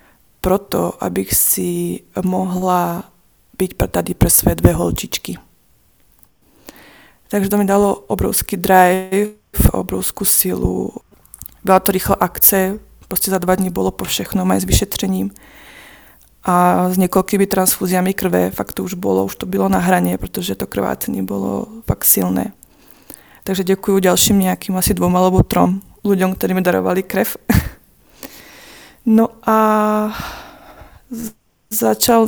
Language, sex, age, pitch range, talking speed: Czech, female, 20-39, 180-210 Hz, 125 wpm